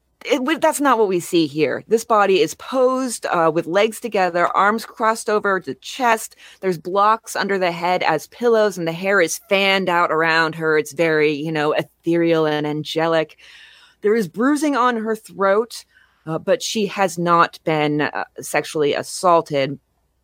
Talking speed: 165 wpm